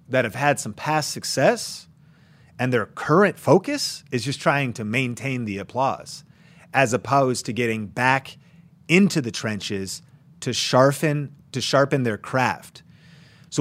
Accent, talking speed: American, 140 wpm